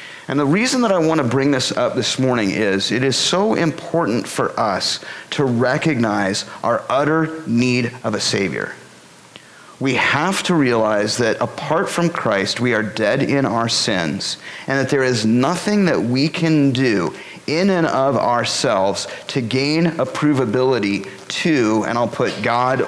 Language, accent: English, American